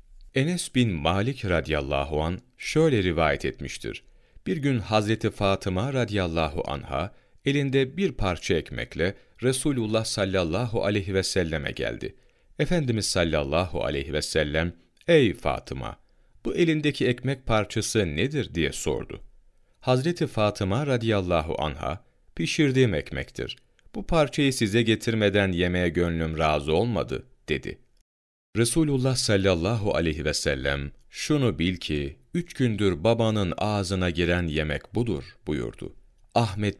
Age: 40-59